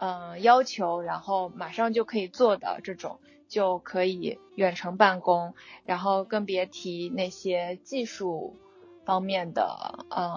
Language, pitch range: Chinese, 185-235 Hz